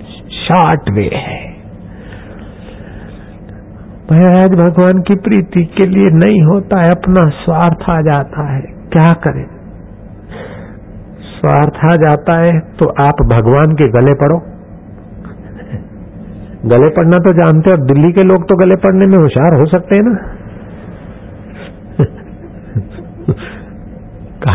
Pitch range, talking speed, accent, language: 105-175 Hz, 115 wpm, native, Hindi